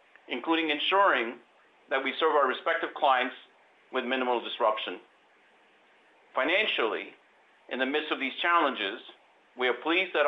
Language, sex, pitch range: English, male, 125-165 Hz